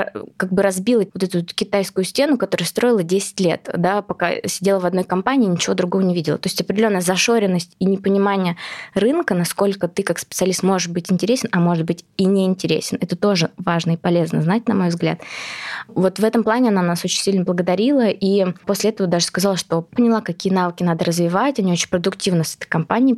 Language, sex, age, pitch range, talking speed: Russian, female, 20-39, 175-205 Hz, 195 wpm